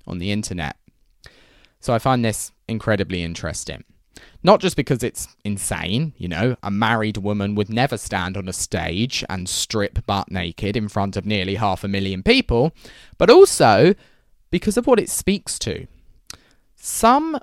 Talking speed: 160 wpm